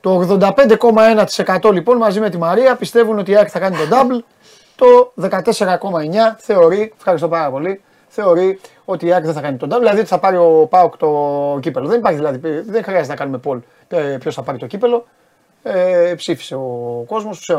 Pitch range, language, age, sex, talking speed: 160-230 Hz, Greek, 30-49, male, 185 wpm